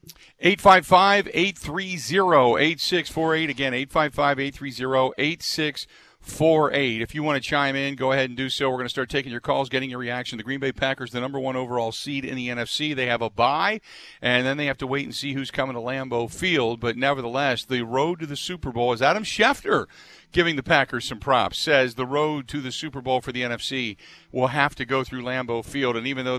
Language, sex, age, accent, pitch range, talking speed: English, male, 50-69, American, 125-150 Hz, 210 wpm